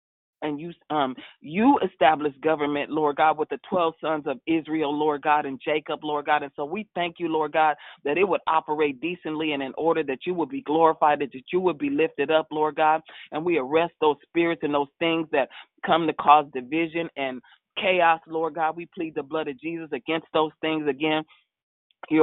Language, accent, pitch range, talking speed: English, American, 150-160 Hz, 205 wpm